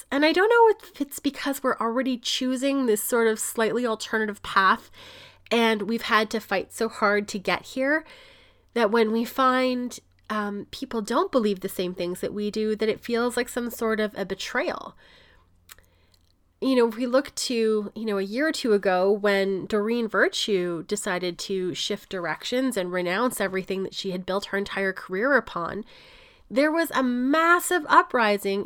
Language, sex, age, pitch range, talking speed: English, female, 30-49, 200-260 Hz, 180 wpm